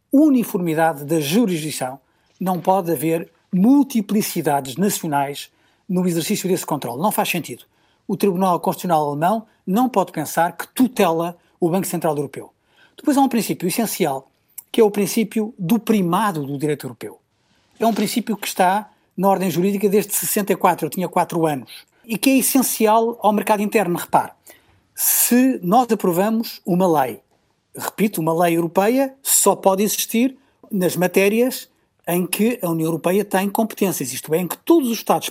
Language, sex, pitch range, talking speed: Portuguese, male, 175-230 Hz, 155 wpm